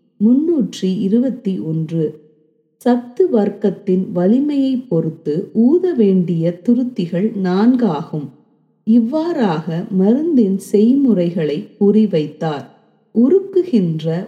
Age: 30-49